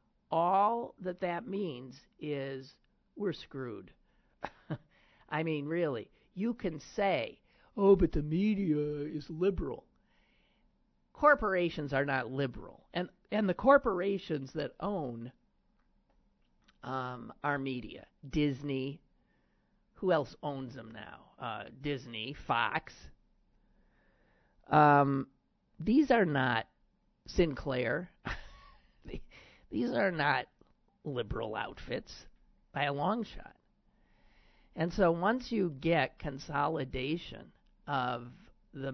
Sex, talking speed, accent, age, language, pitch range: male, 95 wpm, American, 50-69, English, 130-180 Hz